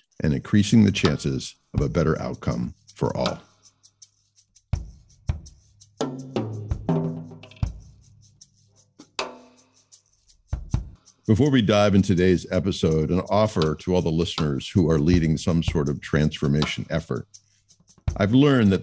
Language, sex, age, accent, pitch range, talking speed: English, male, 50-69, American, 80-105 Hz, 105 wpm